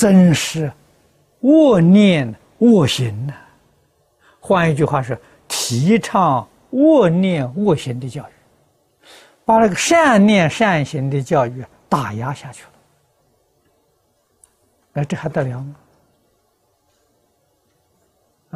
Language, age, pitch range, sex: Chinese, 60-79, 140-195 Hz, male